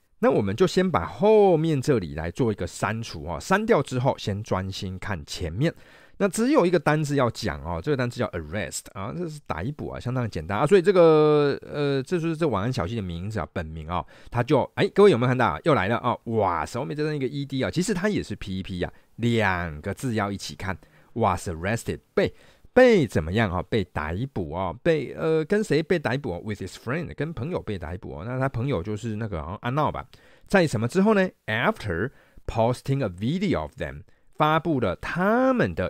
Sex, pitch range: male, 95-150 Hz